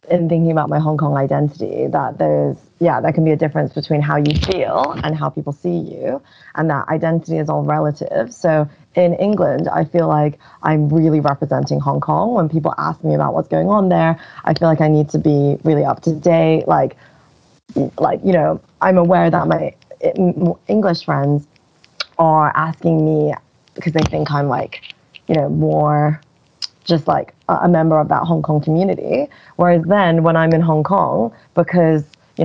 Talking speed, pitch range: 185 wpm, 150-170 Hz